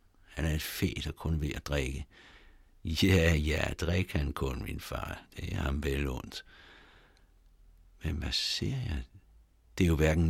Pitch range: 75-95 Hz